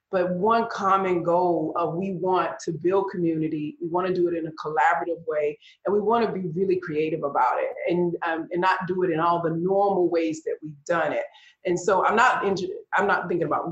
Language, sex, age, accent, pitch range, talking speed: English, female, 40-59, American, 165-205 Hz, 230 wpm